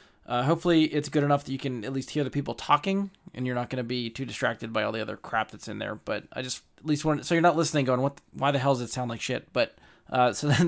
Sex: male